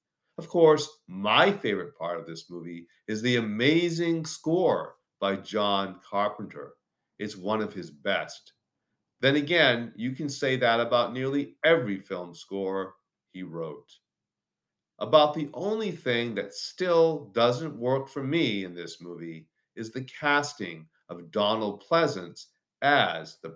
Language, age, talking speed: English, 50-69, 140 wpm